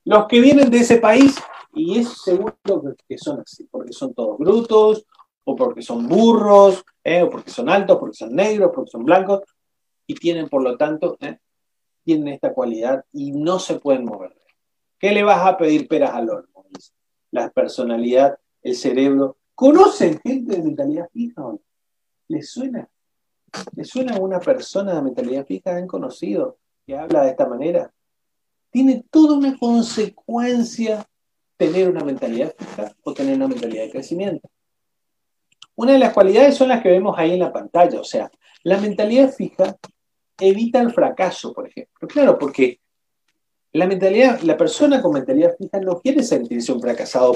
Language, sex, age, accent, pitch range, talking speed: Spanish, male, 30-49, Argentinian, 170-270 Hz, 160 wpm